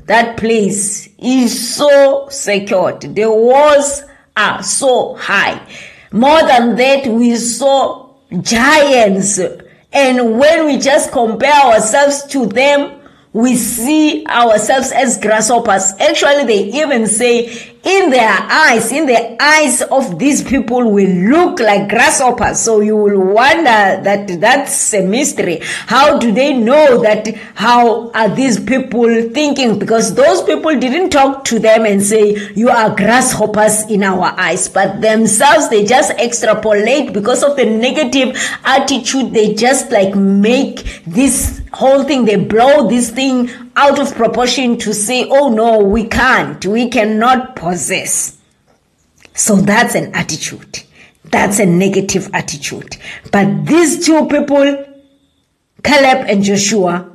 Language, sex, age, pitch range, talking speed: English, female, 20-39, 210-270 Hz, 135 wpm